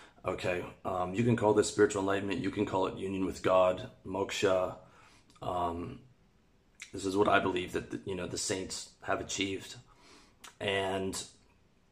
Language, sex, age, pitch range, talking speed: English, male, 30-49, 95-115 Hz, 145 wpm